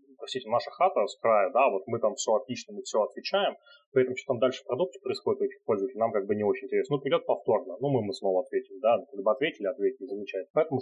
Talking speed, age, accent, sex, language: 240 wpm, 30-49, native, male, Russian